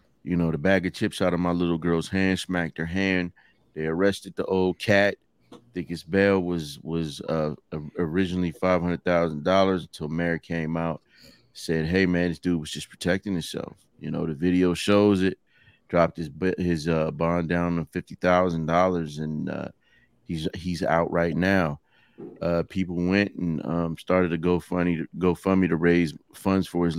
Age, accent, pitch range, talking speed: 30-49, American, 80-95 Hz, 185 wpm